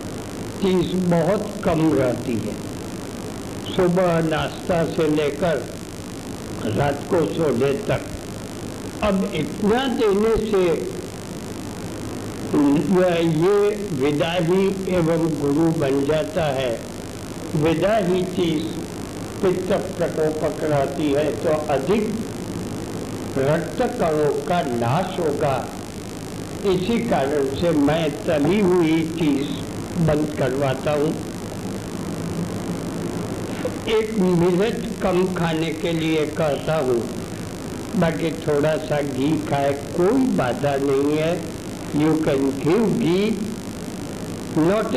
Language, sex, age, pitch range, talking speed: Hindi, male, 60-79, 145-185 Hz, 95 wpm